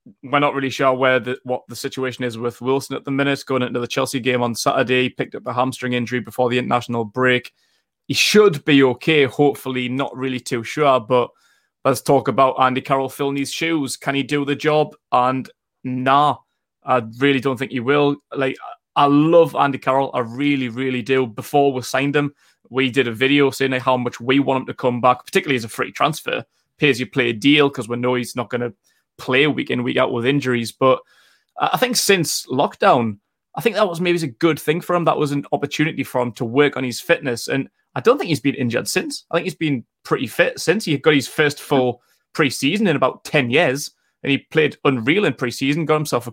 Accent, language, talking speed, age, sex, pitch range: British, English, 225 wpm, 20-39, male, 125-145 Hz